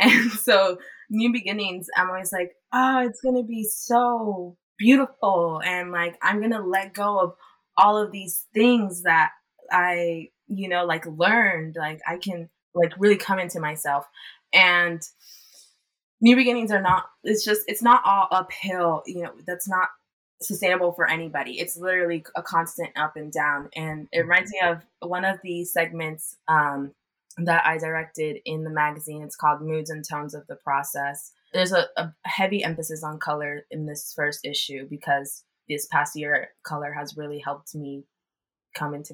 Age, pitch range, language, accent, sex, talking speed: 20-39, 155-190 Hz, English, American, female, 170 wpm